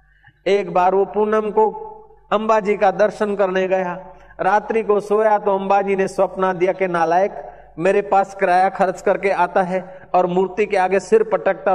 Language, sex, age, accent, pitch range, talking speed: Hindi, male, 50-69, native, 170-205 Hz, 180 wpm